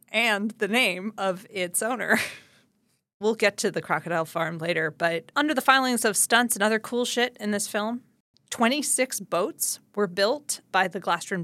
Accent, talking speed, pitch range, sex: American, 175 wpm, 180-230 Hz, female